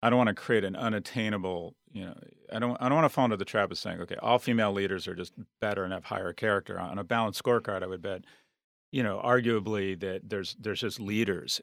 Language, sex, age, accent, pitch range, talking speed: English, male, 40-59, American, 95-120 Hz, 240 wpm